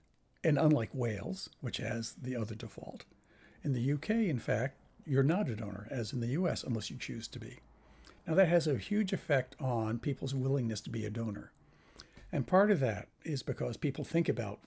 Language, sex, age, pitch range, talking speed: English, male, 60-79, 115-155 Hz, 195 wpm